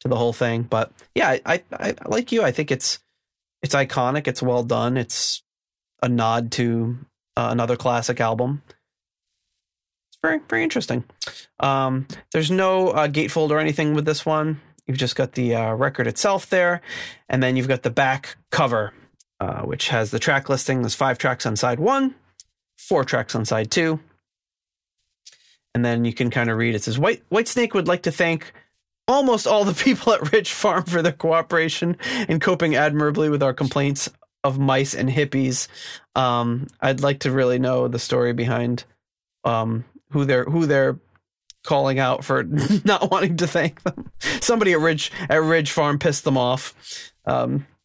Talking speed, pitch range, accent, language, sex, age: 175 wpm, 120-160 Hz, American, English, male, 30-49